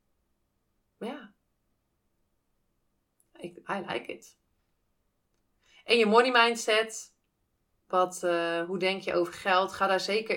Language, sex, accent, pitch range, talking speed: Dutch, female, Dutch, 175-220 Hz, 110 wpm